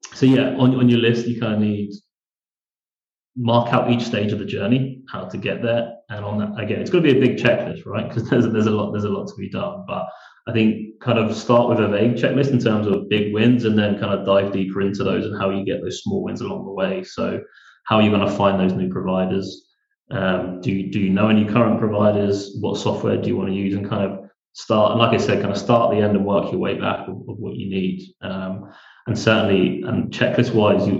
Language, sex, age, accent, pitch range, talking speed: English, male, 20-39, British, 95-115 Hz, 260 wpm